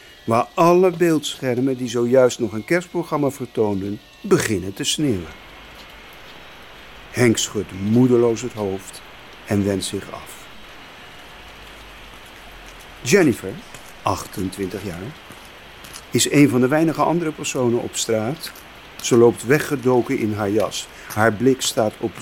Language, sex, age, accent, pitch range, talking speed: Dutch, male, 50-69, Dutch, 100-140 Hz, 115 wpm